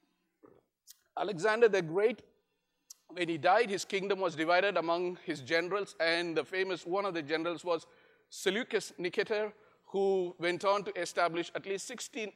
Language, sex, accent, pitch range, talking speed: English, male, Indian, 170-225 Hz, 150 wpm